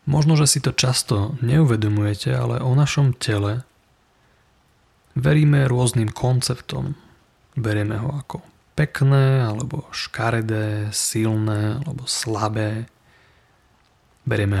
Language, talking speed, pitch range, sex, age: Slovak, 95 wpm, 110-135 Hz, male, 30-49